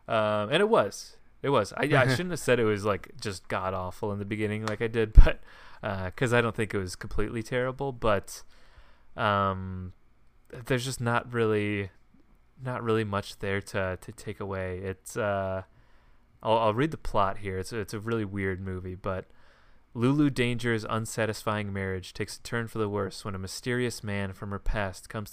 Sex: male